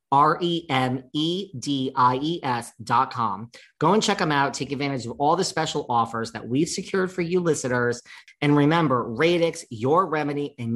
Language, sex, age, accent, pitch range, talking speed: English, male, 40-59, American, 110-145 Hz, 190 wpm